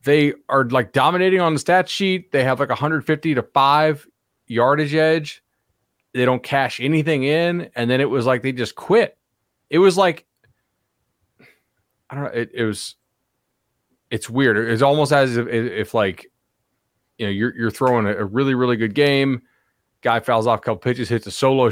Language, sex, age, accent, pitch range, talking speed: English, male, 30-49, American, 110-140 Hz, 180 wpm